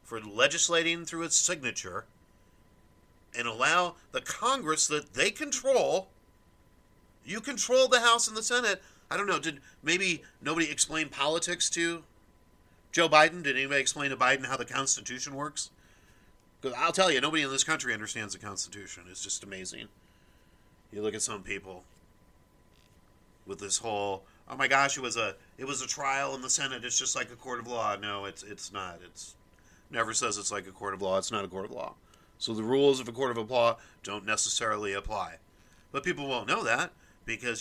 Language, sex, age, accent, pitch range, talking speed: English, male, 40-59, American, 100-150 Hz, 185 wpm